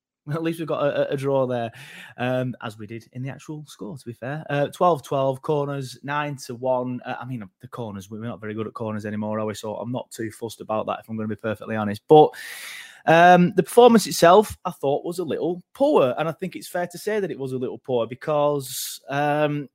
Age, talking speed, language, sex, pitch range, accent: 20-39, 240 wpm, English, male, 120-155 Hz, British